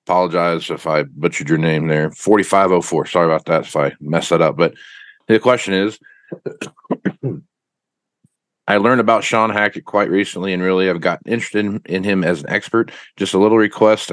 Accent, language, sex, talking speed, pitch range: American, English, male, 180 wpm, 80-100 Hz